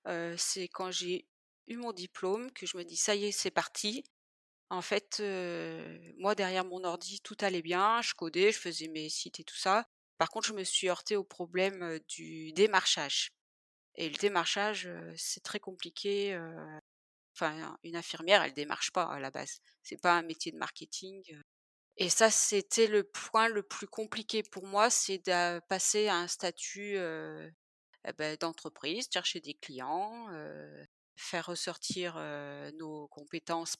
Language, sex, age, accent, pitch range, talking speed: French, female, 30-49, French, 160-200 Hz, 180 wpm